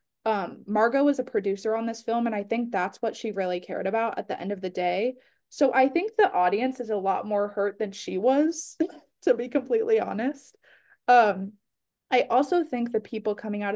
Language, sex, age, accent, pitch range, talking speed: English, female, 20-39, American, 200-265 Hz, 210 wpm